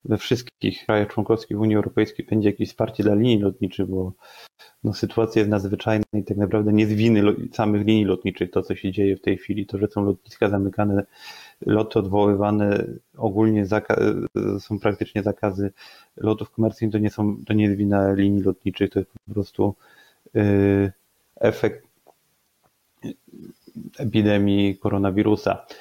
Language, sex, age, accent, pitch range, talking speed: Polish, male, 30-49, native, 100-110 Hz, 150 wpm